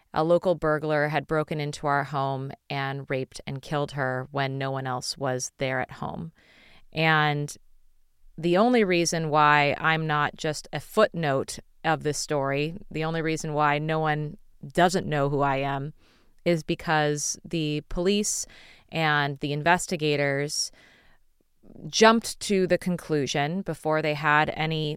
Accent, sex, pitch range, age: American, female, 145-170 Hz, 30-49